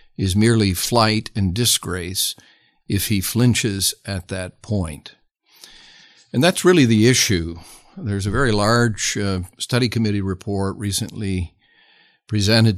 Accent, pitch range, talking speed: American, 95-115 Hz, 120 wpm